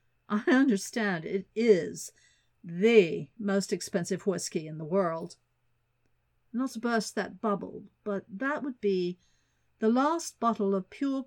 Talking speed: 130 wpm